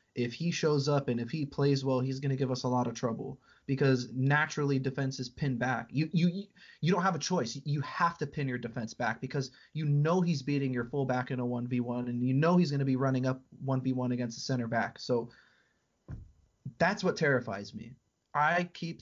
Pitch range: 125-145 Hz